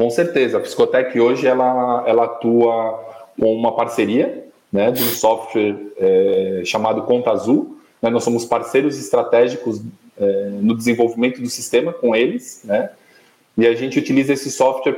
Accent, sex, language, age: Brazilian, male, Portuguese, 20-39